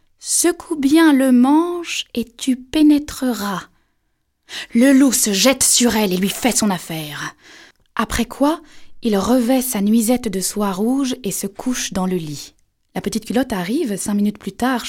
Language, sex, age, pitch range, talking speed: French, female, 20-39, 195-270 Hz, 165 wpm